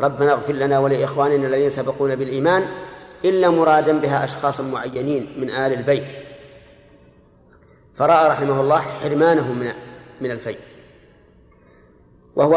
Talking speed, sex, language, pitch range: 110 wpm, male, Arabic, 135-165 Hz